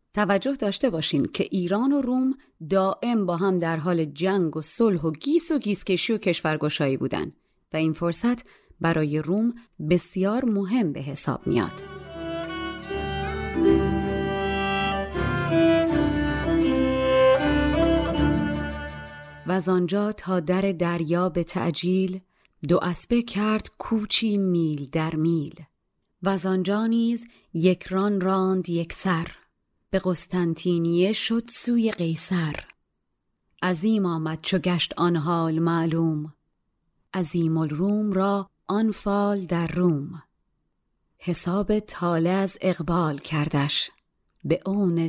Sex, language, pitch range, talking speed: female, Persian, 160-205 Hz, 100 wpm